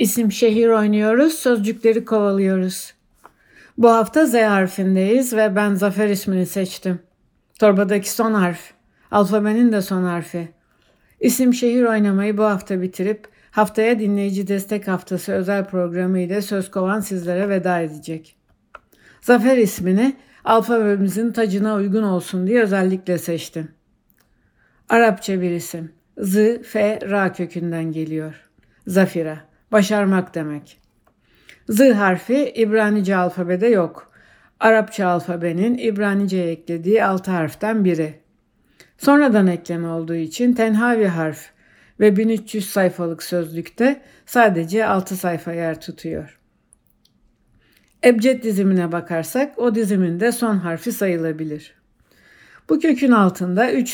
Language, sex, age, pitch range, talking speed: Turkish, female, 60-79, 175-225 Hz, 110 wpm